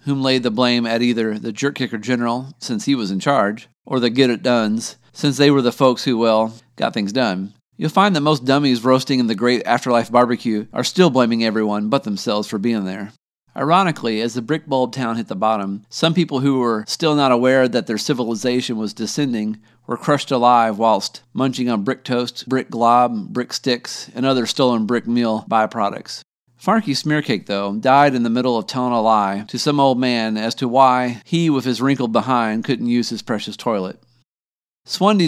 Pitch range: 115-135 Hz